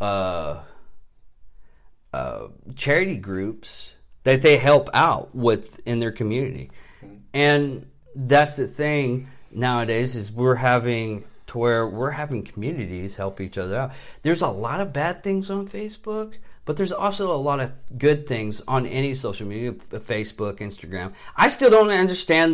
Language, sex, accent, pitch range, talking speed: English, male, American, 110-150 Hz, 145 wpm